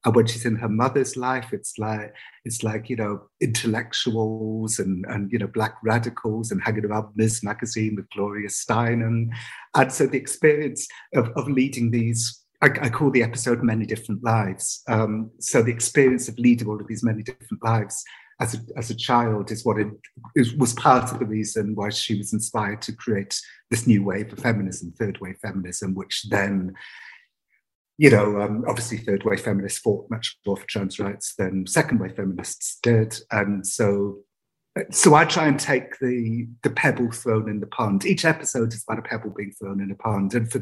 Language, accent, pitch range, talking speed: English, British, 105-125 Hz, 190 wpm